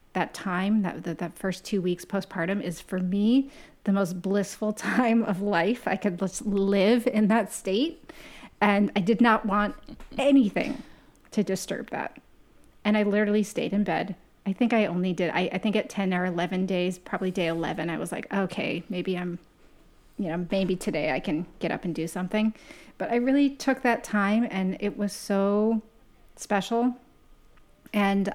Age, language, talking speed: 30-49, English, 180 wpm